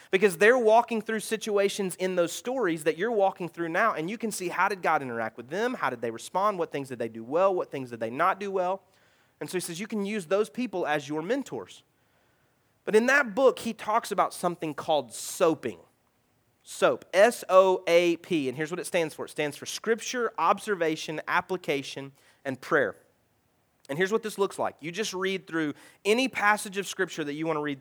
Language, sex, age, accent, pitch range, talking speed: English, male, 30-49, American, 155-200 Hz, 210 wpm